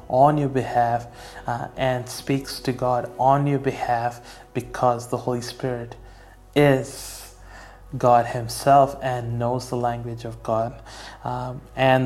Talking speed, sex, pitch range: 130 wpm, male, 120-135 Hz